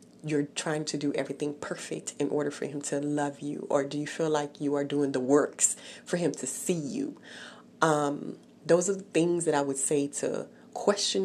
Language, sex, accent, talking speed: English, female, American, 210 wpm